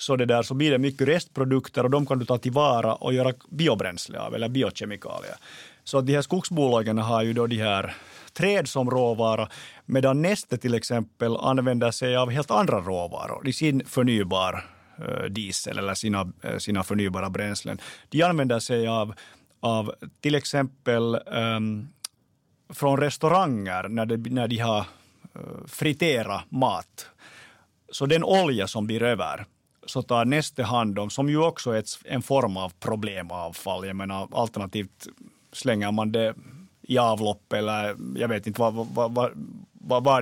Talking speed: 155 wpm